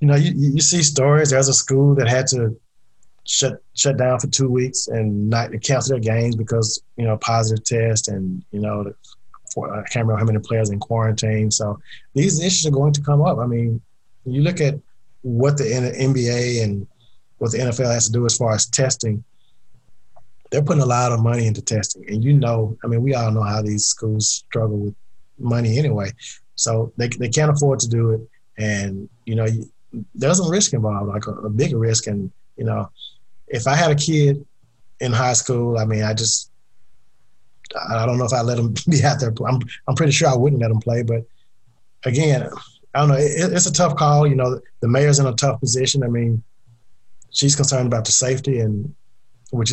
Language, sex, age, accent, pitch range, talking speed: English, male, 20-39, American, 110-135 Hz, 210 wpm